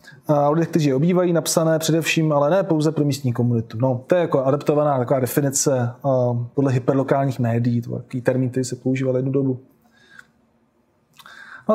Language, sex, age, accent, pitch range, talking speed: Czech, male, 20-39, native, 140-180 Hz, 160 wpm